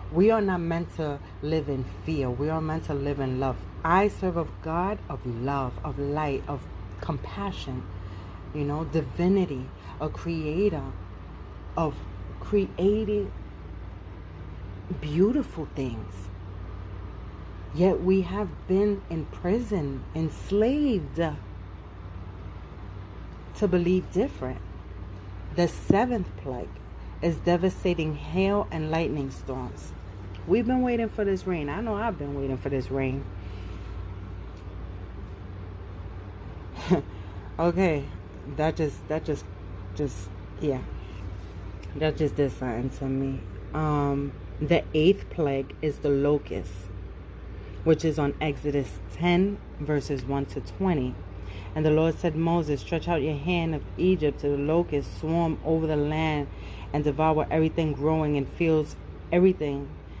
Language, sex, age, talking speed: English, female, 40-59, 120 wpm